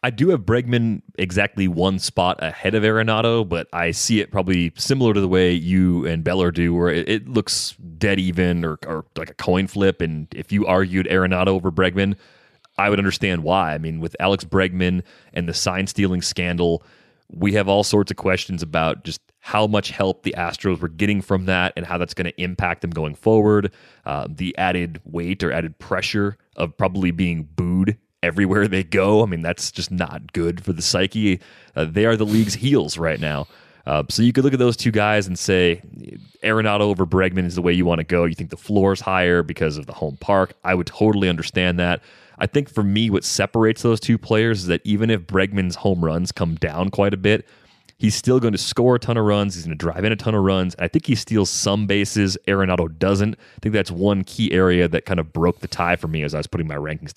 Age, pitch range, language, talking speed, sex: 30-49, 85-105 Hz, English, 225 wpm, male